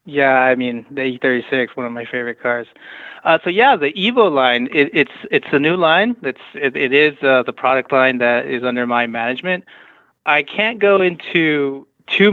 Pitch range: 125-150 Hz